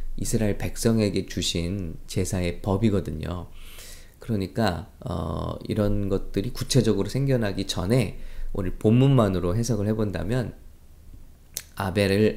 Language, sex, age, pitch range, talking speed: English, male, 20-39, 90-120 Hz, 80 wpm